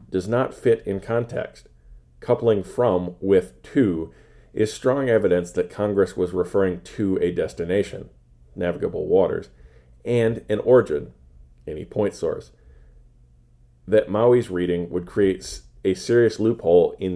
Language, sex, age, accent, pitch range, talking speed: English, male, 40-59, American, 80-110 Hz, 125 wpm